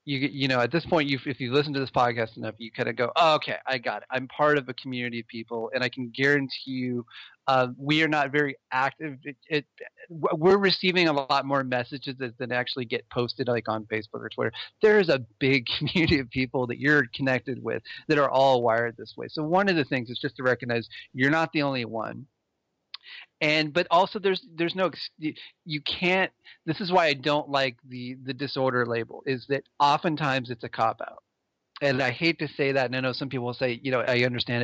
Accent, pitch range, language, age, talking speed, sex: American, 120-150 Hz, English, 30-49, 220 wpm, male